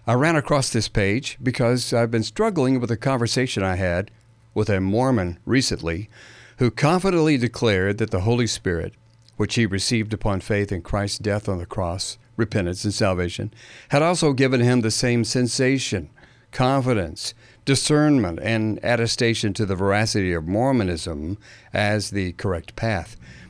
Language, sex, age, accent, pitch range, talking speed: English, male, 60-79, American, 100-125 Hz, 150 wpm